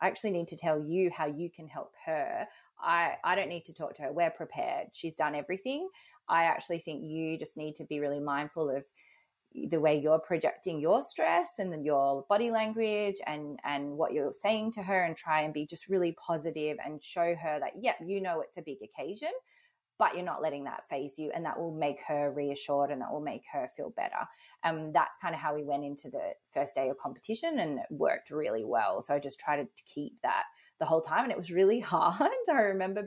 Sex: female